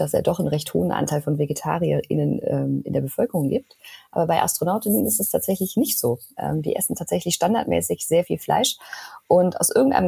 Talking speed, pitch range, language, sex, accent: 185 wpm, 150-190 Hz, German, female, German